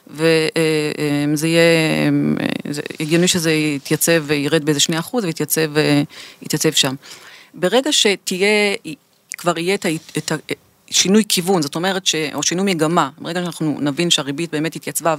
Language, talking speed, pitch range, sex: Hebrew, 120 wpm, 150-180 Hz, female